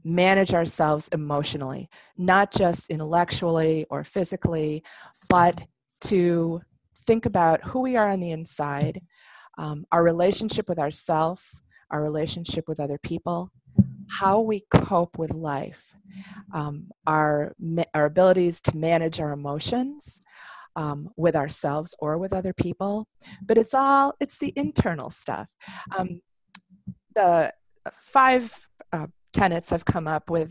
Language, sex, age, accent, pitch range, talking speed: English, female, 30-49, American, 155-195 Hz, 125 wpm